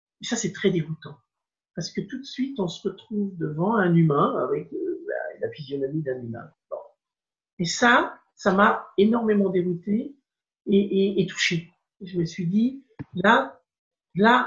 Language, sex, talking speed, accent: French, male, 165 wpm, French